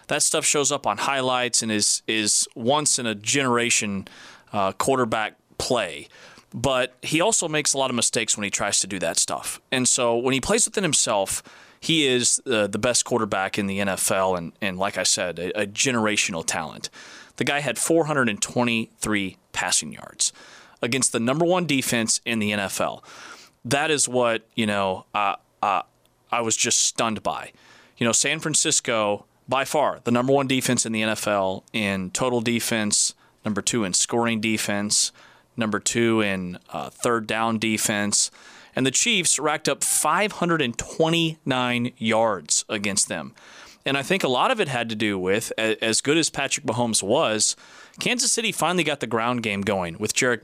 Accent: American